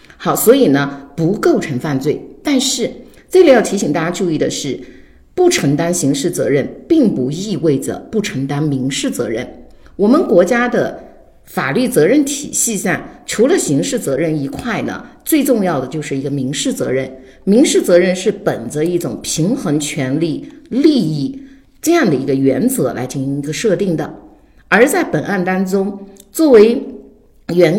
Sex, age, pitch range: female, 50-69, 145-245 Hz